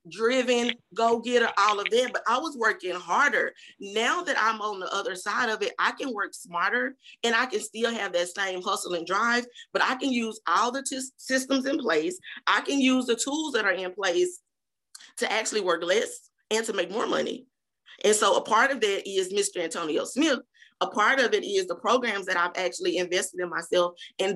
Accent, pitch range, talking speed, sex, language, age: American, 185-260 Hz, 205 wpm, female, English, 30-49